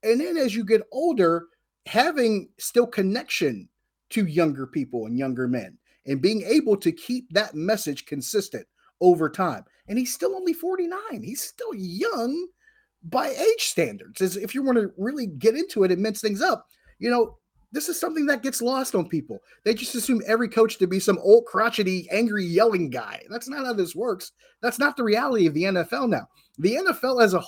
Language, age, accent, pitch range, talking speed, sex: English, 30-49, American, 185-245 Hz, 190 wpm, male